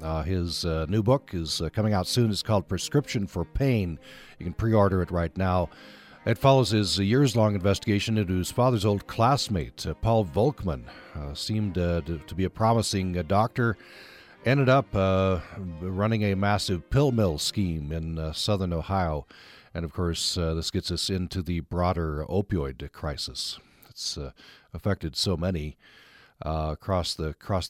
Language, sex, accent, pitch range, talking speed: English, male, American, 90-110 Hz, 165 wpm